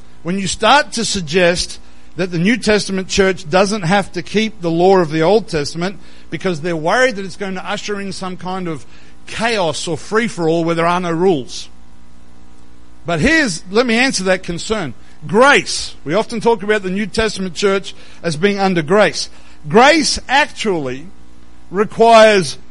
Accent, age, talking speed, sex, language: Australian, 50-69, 165 wpm, male, English